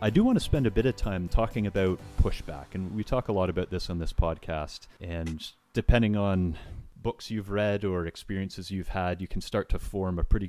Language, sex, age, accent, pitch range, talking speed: English, male, 30-49, American, 90-110 Hz, 225 wpm